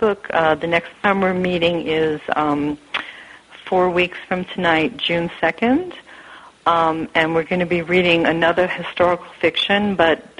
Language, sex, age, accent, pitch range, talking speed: English, female, 50-69, American, 150-185 Hz, 145 wpm